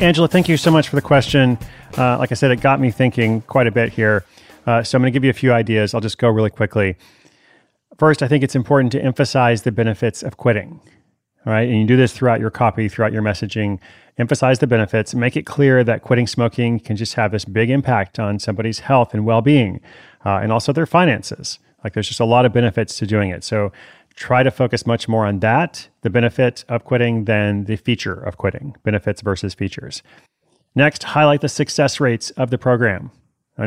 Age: 30-49